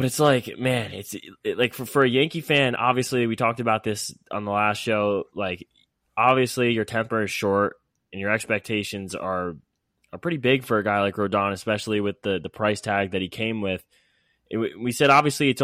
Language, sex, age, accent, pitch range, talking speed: English, male, 10-29, American, 105-135 Hz, 205 wpm